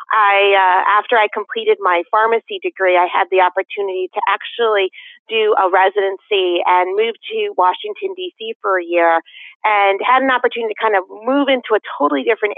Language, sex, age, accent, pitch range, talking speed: English, female, 30-49, American, 180-210 Hz, 175 wpm